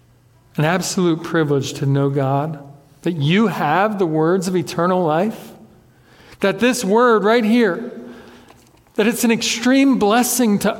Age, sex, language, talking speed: 50-69, male, English, 140 wpm